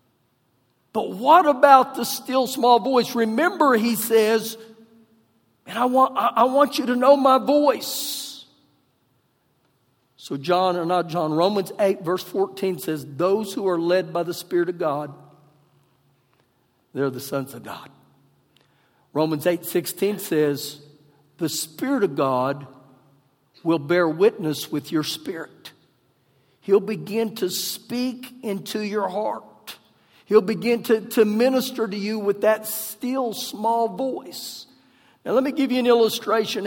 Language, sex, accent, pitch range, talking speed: English, male, American, 160-240 Hz, 135 wpm